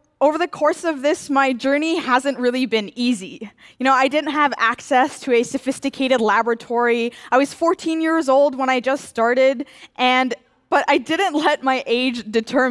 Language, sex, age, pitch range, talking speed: French, female, 10-29, 240-295 Hz, 180 wpm